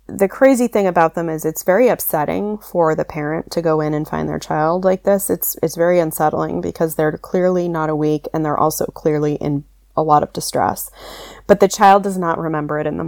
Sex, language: female, English